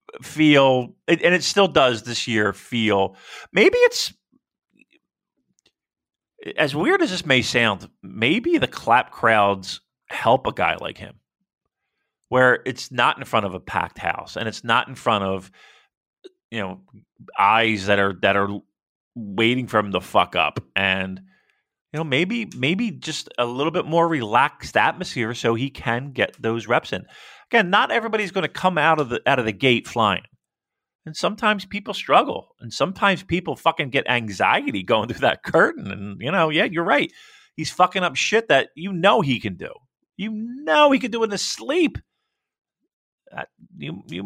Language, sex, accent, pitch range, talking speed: English, male, American, 115-190 Hz, 170 wpm